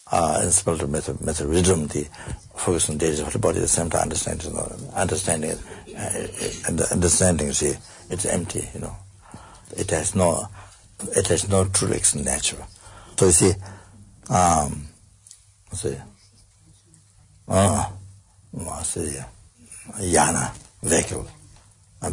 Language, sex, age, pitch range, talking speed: English, male, 60-79, 90-100 Hz, 140 wpm